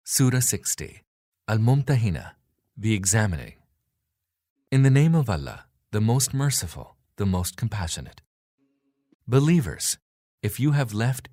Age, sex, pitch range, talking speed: 40-59, male, 90-125 Hz, 110 wpm